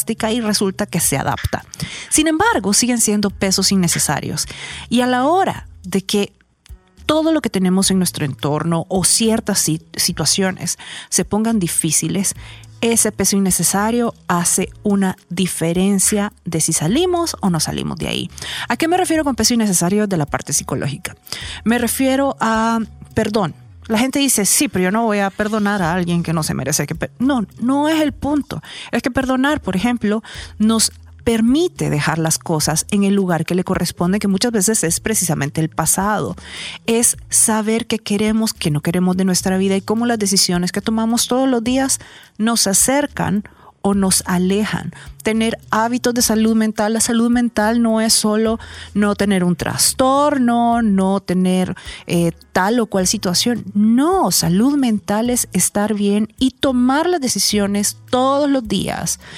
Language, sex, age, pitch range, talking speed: Spanish, female, 40-59, 180-230 Hz, 165 wpm